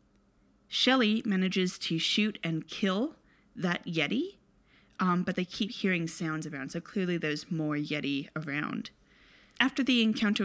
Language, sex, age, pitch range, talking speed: English, female, 30-49, 165-230 Hz, 140 wpm